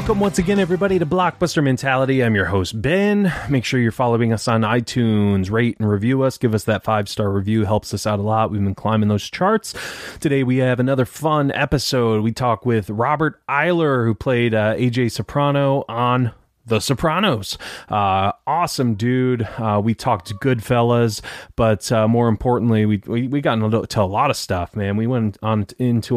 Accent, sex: American, male